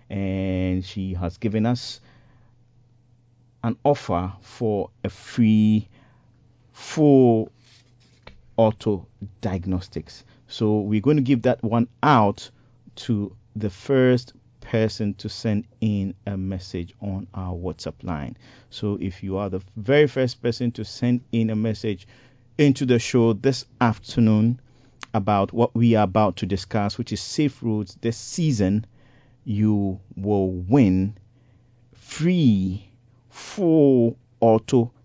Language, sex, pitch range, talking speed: English, male, 100-125 Hz, 120 wpm